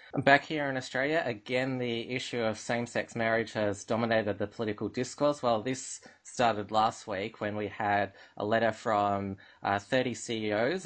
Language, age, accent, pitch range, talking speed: English, 20-39, Australian, 105-120 Hz, 160 wpm